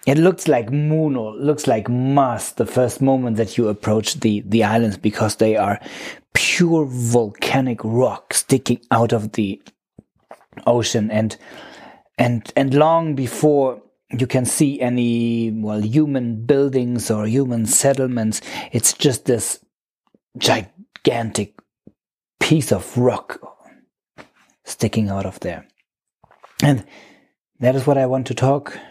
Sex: male